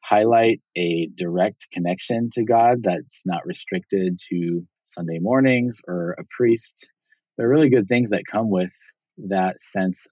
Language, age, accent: English, 20-39, American